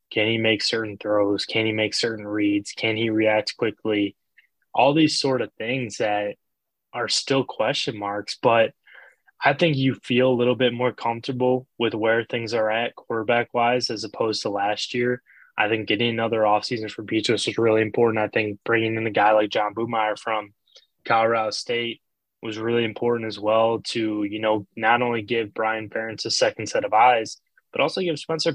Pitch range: 110-120 Hz